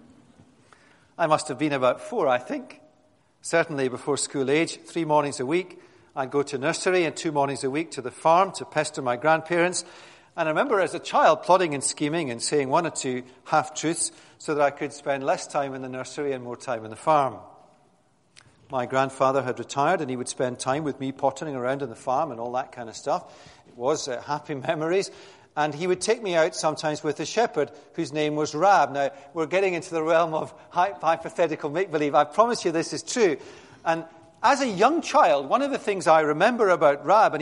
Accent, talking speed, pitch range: British, 215 wpm, 140-185 Hz